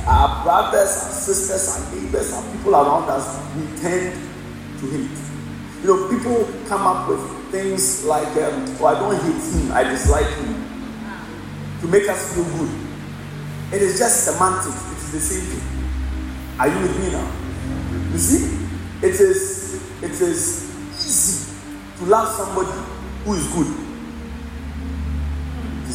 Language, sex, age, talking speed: English, male, 40-59, 150 wpm